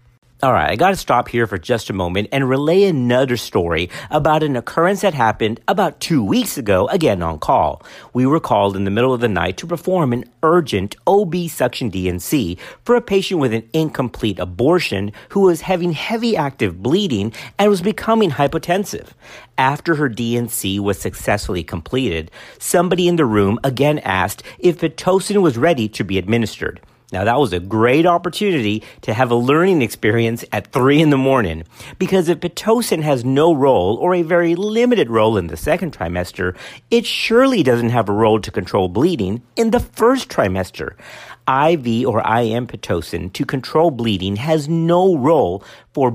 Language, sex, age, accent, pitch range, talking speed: English, male, 50-69, American, 110-170 Hz, 175 wpm